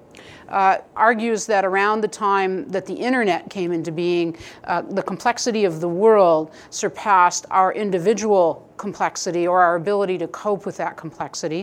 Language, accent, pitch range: English, American, 180-235 Hz